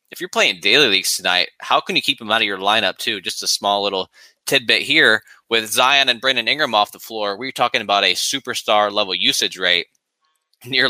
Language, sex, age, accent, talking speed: English, male, 20-39, American, 215 wpm